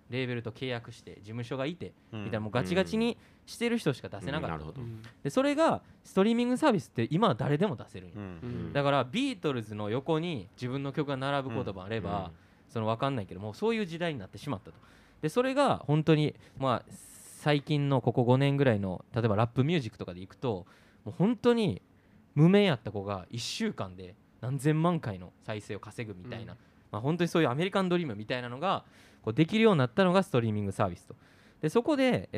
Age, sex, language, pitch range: 20-39, male, Japanese, 105-165 Hz